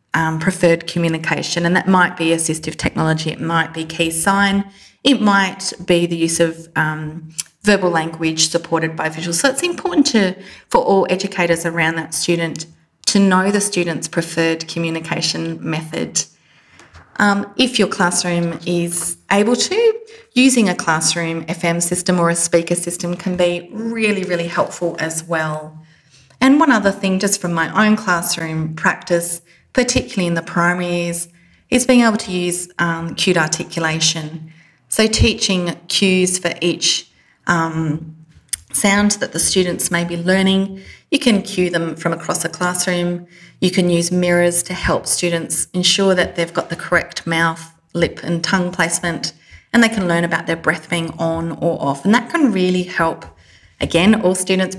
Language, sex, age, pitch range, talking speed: English, female, 30-49, 165-190 Hz, 160 wpm